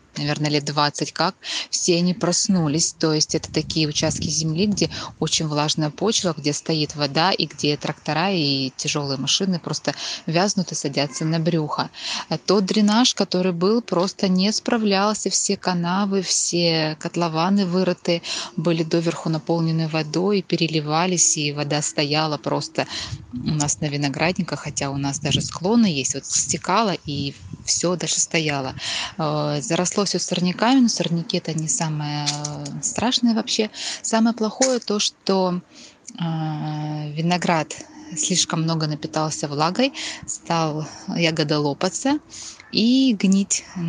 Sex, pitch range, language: female, 150-190 Hz, Russian